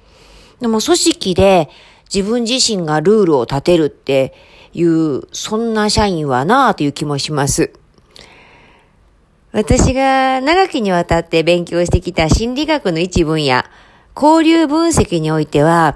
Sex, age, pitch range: female, 40-59, 160-230 Hz